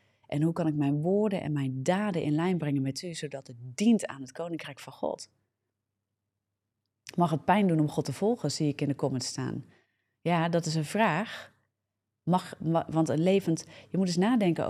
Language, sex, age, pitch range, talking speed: Dutch, female, 30-49, 130-160 Hz, 200 wpm